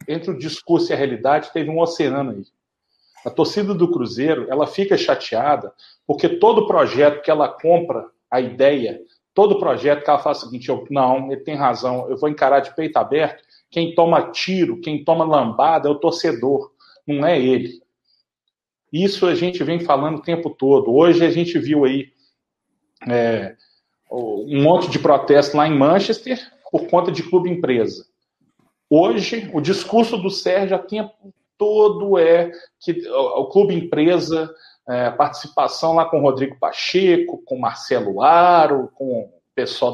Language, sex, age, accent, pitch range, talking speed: Portuguese, male, 40-59, Brazilian, 140-195 Hz, 160 wpm